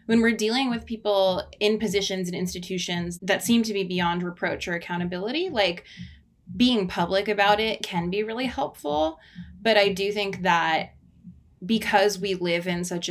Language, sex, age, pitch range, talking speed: English, female, 20-39, 180-220 Hz, 165 wpm